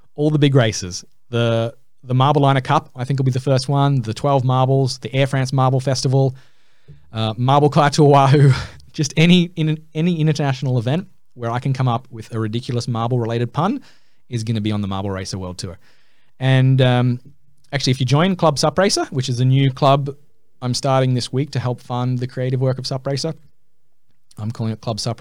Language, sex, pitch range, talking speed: English, male, 115-140 Hz, 205 wpm